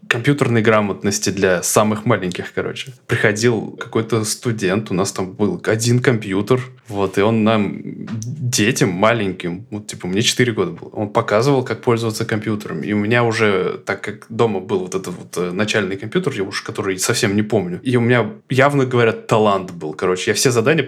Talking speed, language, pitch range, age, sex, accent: 180 wpm, Russian, 110-130 Hz, 20-39, male, native